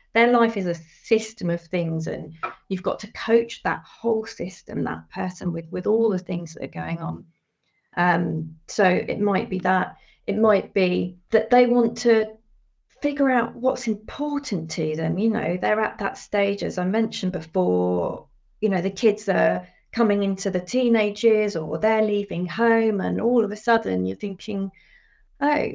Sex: female